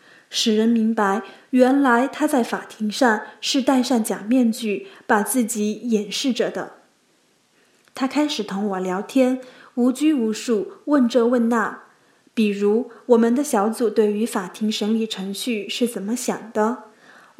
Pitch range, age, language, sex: 210-260 Hz, 20-39, Chinese, female